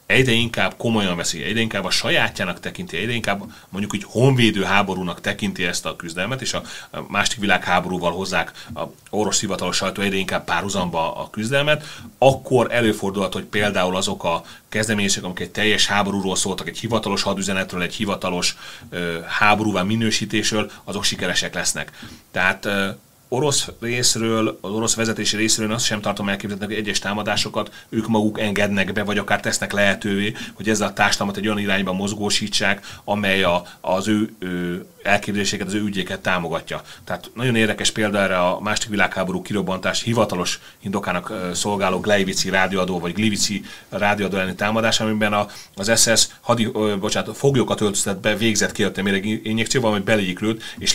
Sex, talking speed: male, 155 wpm